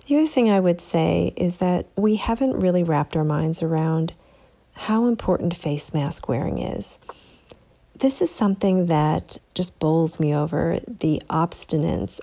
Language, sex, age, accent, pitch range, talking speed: English, female, 40-59, American, 155-190 Hz, 150 wpm